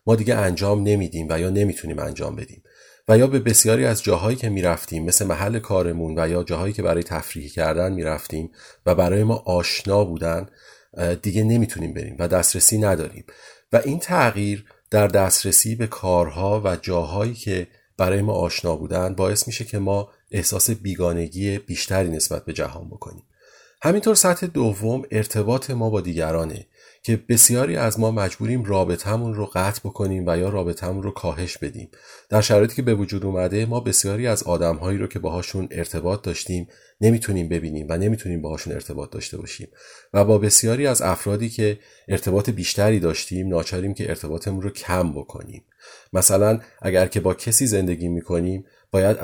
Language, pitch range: Persian, 90-110 Hz